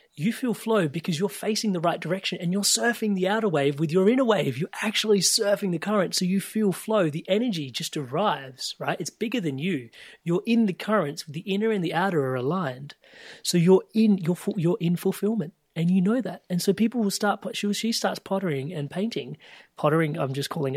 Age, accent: 30-49, Australian